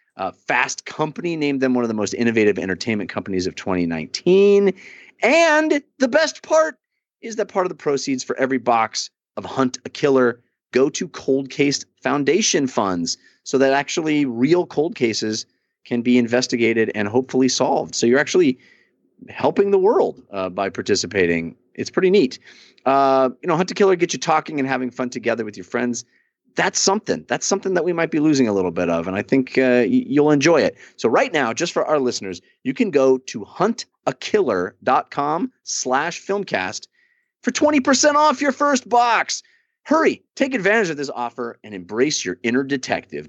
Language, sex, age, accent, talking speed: English, male, 30-49, American, 180 wpm